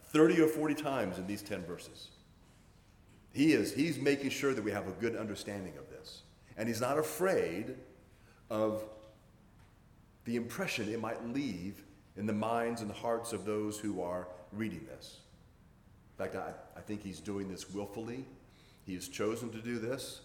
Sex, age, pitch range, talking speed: male, 40-59, 100-135 Hz, 170 wpm